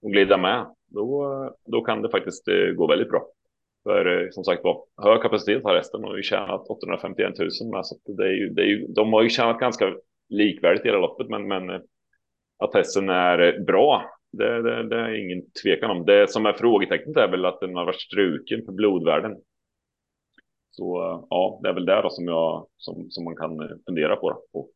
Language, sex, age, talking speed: Swedish, male, 30-49, 205 wpm